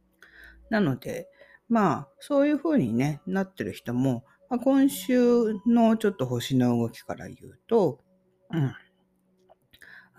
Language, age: Japanese, 50-69